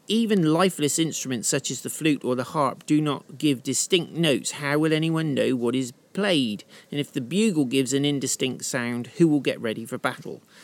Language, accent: English, British